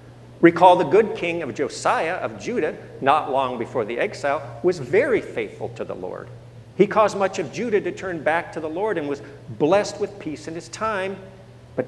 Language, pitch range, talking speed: English, 120-165 Hz, 195 wpm